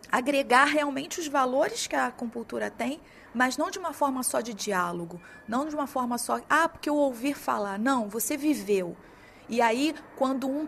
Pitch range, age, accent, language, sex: 225-290 Hz, 30-49, Brazilian, Chinese, female